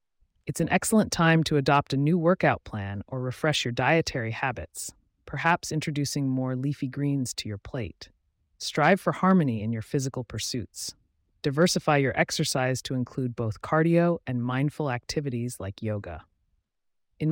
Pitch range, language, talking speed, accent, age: 115-160 Hz, English, 150 wpm, American, 30-49